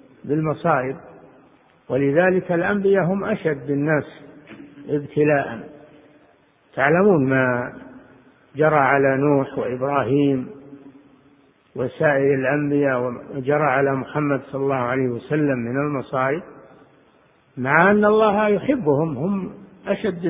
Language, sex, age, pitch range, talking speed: Arabic, male, 60-79, 135-160 Hz, 90 wpm